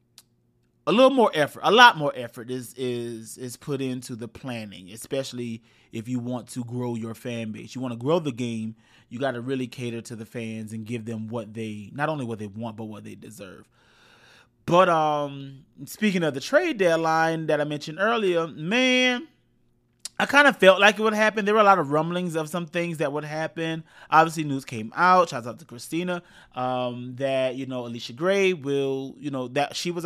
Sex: male